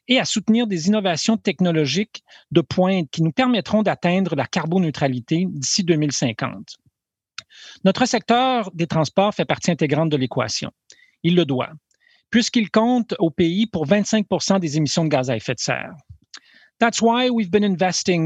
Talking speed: 155 wpm